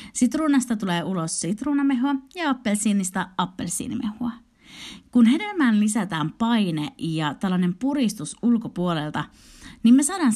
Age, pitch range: 30-49, 165-250 Hz